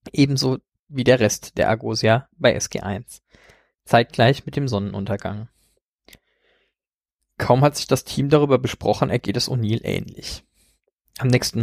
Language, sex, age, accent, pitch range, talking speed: German, male, 20-39, German, 110-135 Hz, 130 wpm